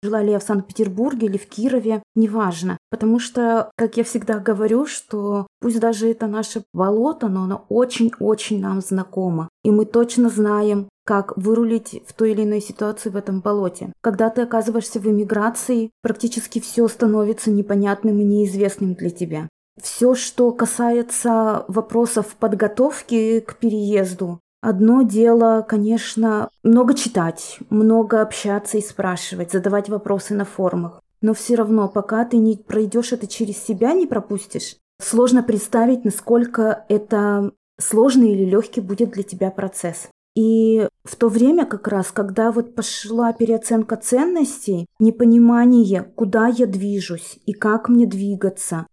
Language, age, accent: Russian, 20-39, native